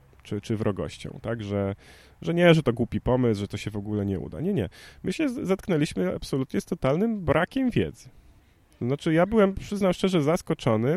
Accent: native